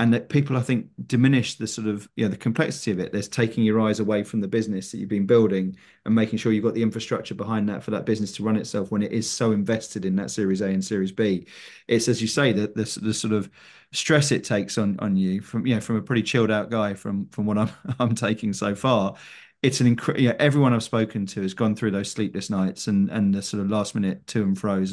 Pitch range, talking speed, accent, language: 100-120 Hz, 265 wpm, British, English